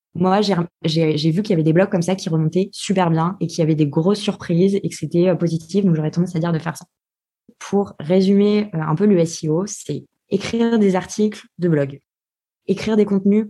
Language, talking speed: French, 230 wpm